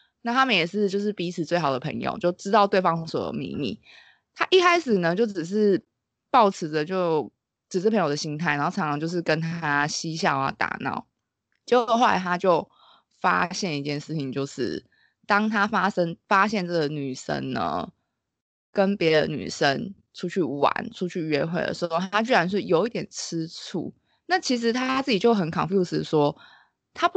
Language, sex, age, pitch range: Chinese, female, 20-39, 155-210 Hz